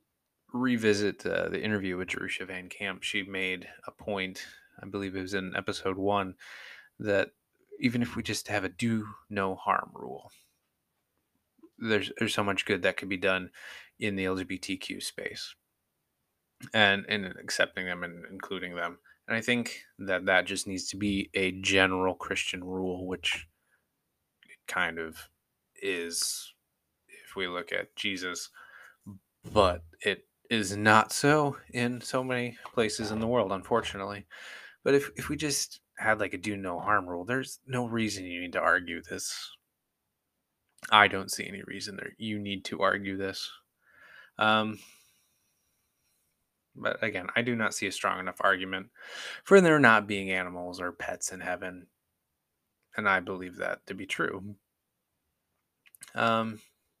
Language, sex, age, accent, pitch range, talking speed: English, male, 20-39, American, 95-110 Hz, 155 wpm